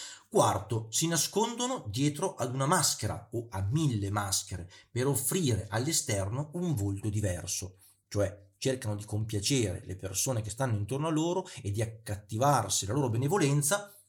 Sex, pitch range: male, 105-155 Hz